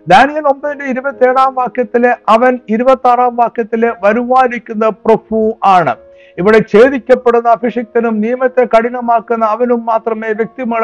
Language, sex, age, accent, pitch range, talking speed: Malayalam, male, 60-79, native, 205-245 Hz, 105 wpm